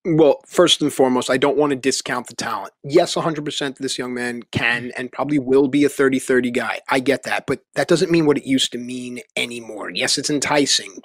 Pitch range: 135-180 Hz